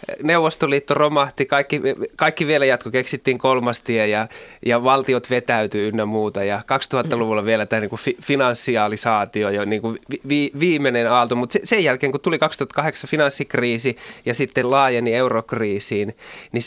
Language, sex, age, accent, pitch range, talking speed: Finnish, male, 20-39, native, 110-140 Hz, 120 wpm